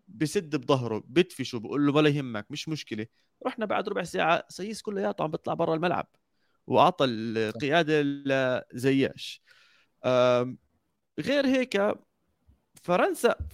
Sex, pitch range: male, 130-200 Hz